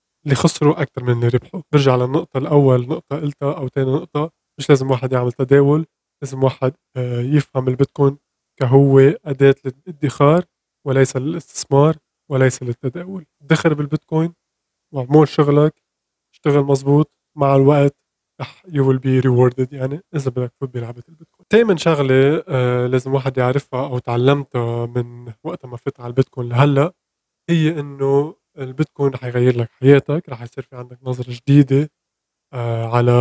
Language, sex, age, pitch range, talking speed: Arabic, male, 20-39, 130-150 Hz, 135 wpm